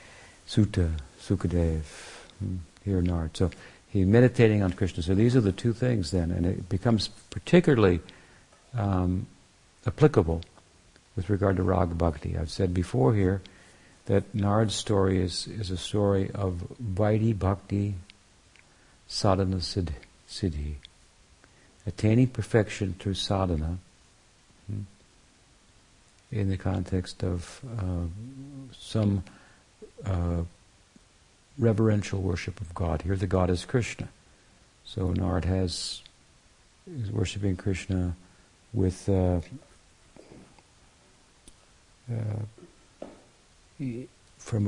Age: 60-79